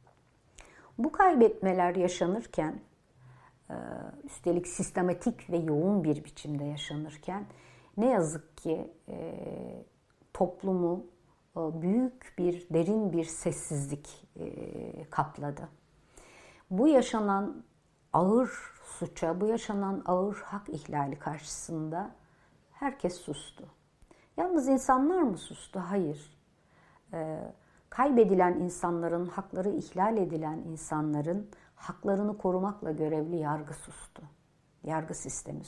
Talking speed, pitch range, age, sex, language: 85 wpm, 155-210 Hz, 60-79, female, Turkish